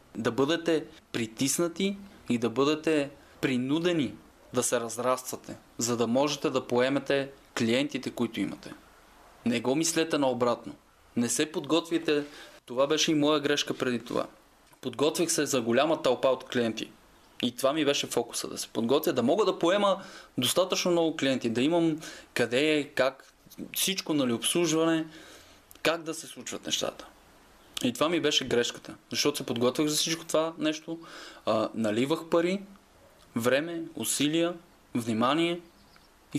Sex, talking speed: male, 140 wpm